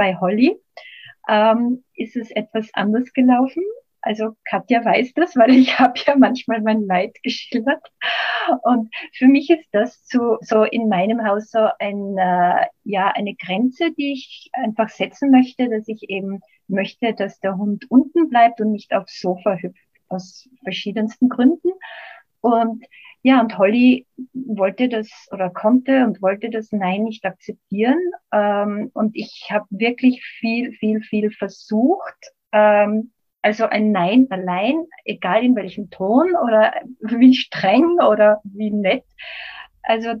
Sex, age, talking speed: female, 30-49, 135 wpm